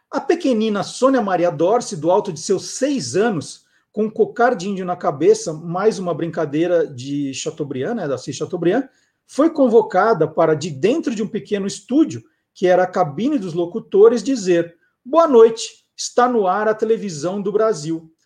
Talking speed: 170 wpm